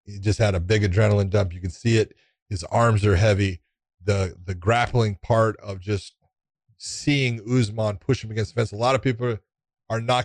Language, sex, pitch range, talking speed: English, male, 105-125 Hz, 200 wpm